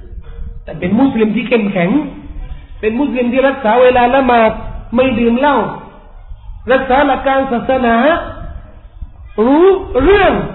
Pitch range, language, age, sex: 195-305 Hz, Thai, 40-59, male